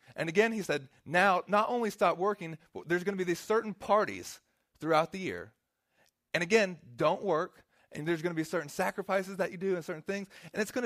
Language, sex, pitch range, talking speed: English, male, 165-210 Hz, 220 wpm